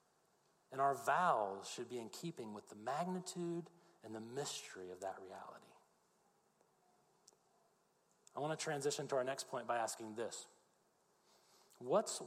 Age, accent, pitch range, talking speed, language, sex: 30-49, American, 125-190 Hz, 130 wpm, English, male